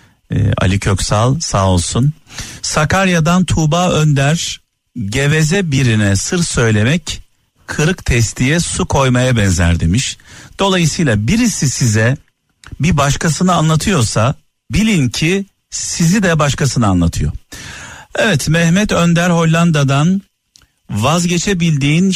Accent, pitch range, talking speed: native, 110-155 Hz, 90 wpm